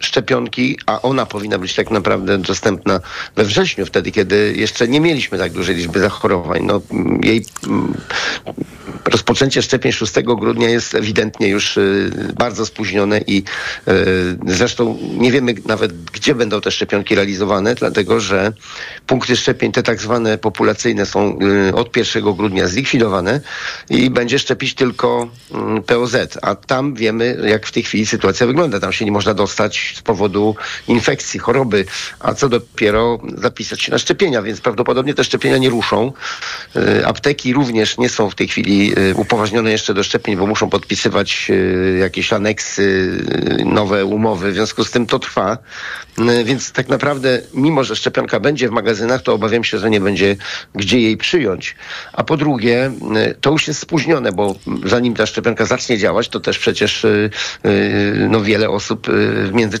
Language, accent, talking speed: Polish, native, 155 wpm